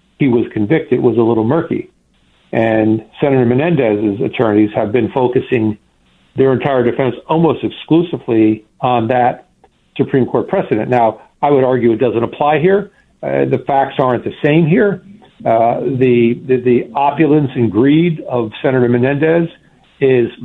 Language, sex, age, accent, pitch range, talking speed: English, male, 60-79, American, 120-150 Hz, 145 wpm